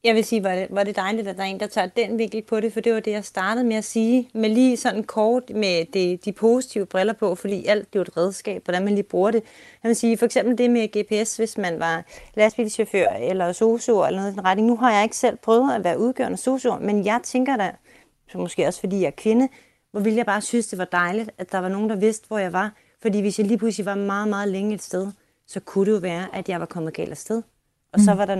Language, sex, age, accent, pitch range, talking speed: Danish, female, 30-49, native, 190-230 Hz, 260 wpm